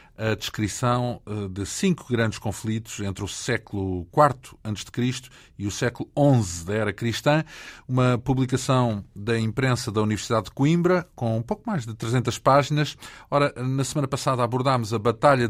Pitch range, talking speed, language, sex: 110-140 Hz, 150 wpm, Portuguese, male